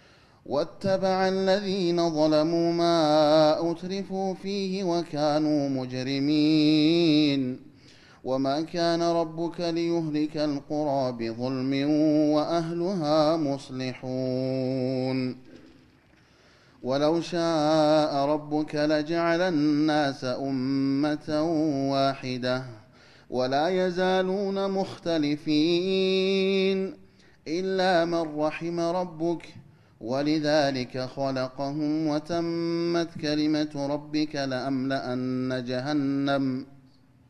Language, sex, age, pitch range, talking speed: Amharic, male, 30-49, 135-170 Hz, 60 wpm